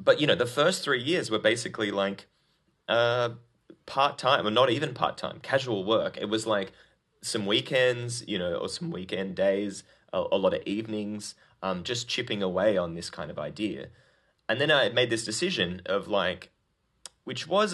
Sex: male